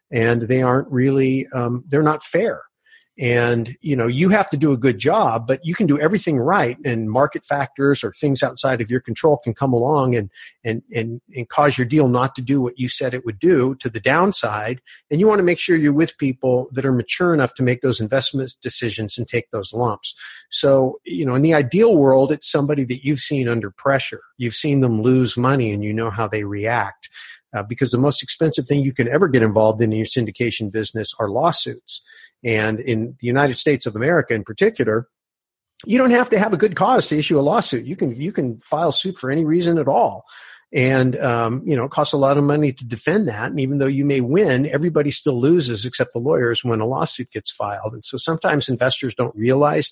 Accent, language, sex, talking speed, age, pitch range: American, English, male, 225 wpm, 50-69, 120-150 Hz